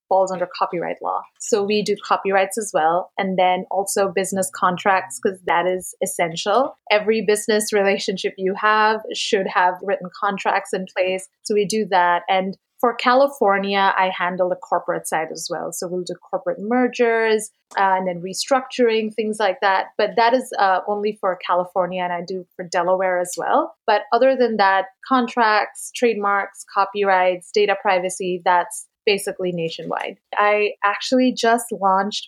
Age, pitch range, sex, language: 30-49, 185-220 Hz, female, English